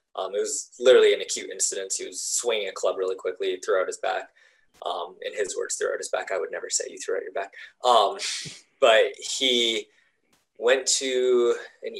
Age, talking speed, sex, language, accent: 20-39, 195 wpm, male, English, American